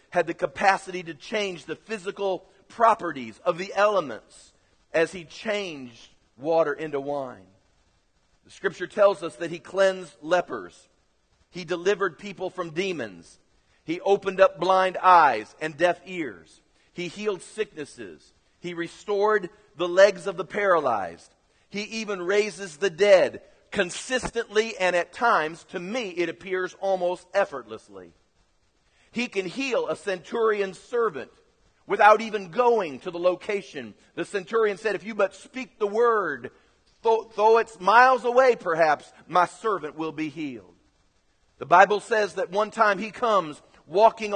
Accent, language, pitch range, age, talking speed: American, English, 175-215 Hz, 40-59, 140 wpm